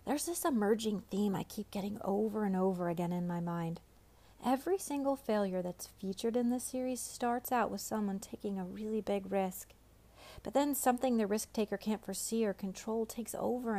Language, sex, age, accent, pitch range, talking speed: English, female, 40-59, American, 185-240 Hz, 185 wpm